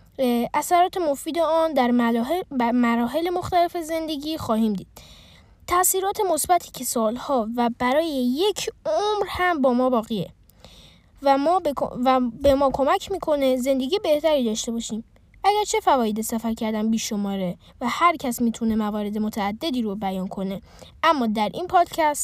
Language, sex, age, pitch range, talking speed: Persian, female, 10-29, 220-320 Hz, 140 wpm